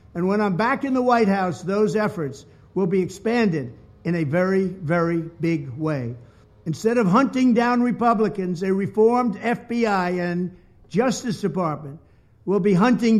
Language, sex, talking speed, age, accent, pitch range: English, male, 150 wpm, 60-79, American, 180-230 Hz